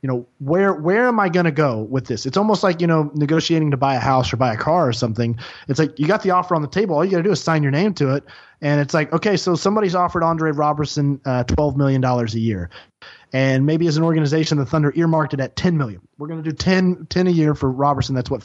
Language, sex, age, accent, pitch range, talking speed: English, male, 30-49, American, 135-175 Hz, 270 wpm